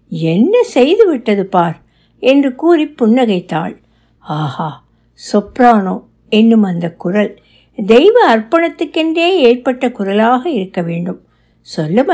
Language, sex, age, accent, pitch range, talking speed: Tamil, female, 60-79, native, 205-285 Hz, 55 wpm